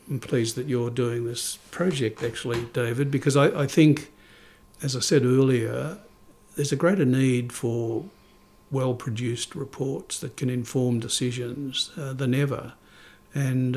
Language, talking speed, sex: English, 140 wpm, male